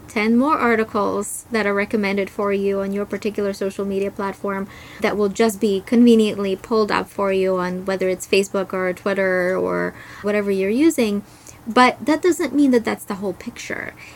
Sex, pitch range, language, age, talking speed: female, 200-235 Hz, English, 20-39, 180 wpm